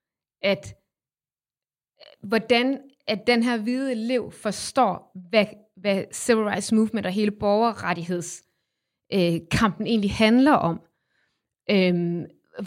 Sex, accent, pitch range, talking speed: female, native, 200-250 Hz, 100 wpm